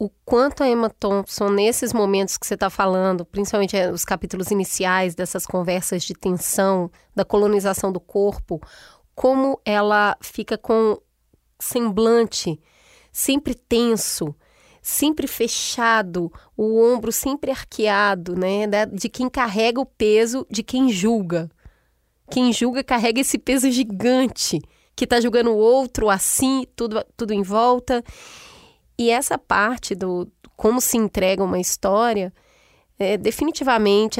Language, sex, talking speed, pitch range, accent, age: Portuguese, female, 125 wpm, 200-240 Hz, Brazilian, 20-39